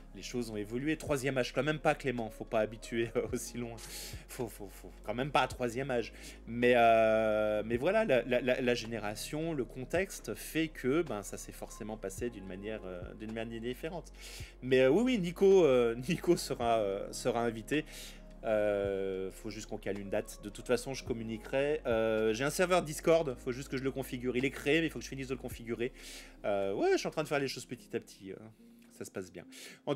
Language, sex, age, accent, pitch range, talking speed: French, male, 30-49, French, 115-155 Hz, 230 wpm